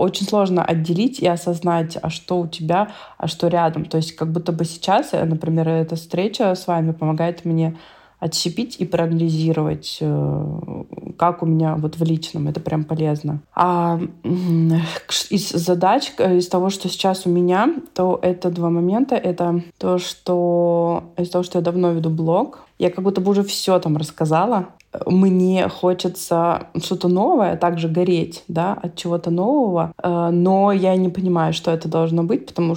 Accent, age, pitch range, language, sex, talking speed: native, 20-39, 165-185 Hz, Russian, female, 160 wpm